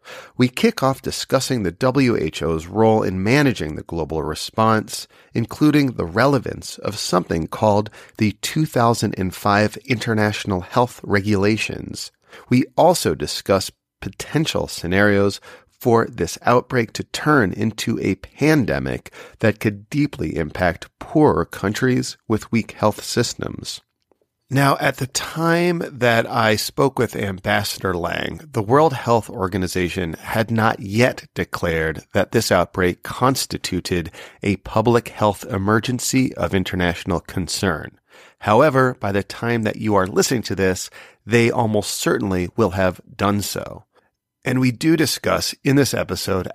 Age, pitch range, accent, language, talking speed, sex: 40-59, 95-125 Hz, American, English, 130 wpm, male